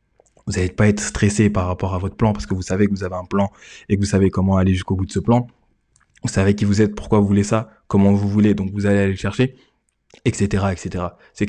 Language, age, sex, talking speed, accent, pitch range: French, 20-39, male, 265 wpm, French, 100-110 Hz